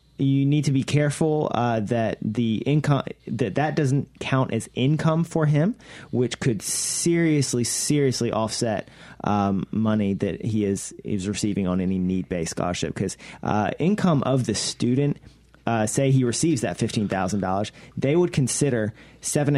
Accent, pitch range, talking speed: American, 105-140 Hz, 155 wpm